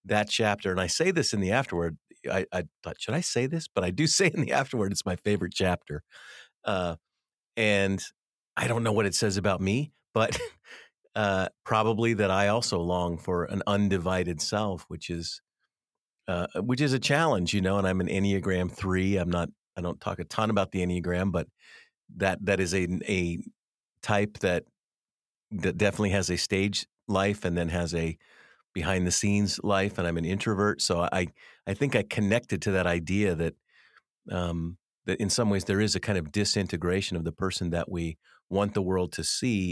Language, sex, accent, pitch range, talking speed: English, male, American, 85-105 Hz, 195 wpm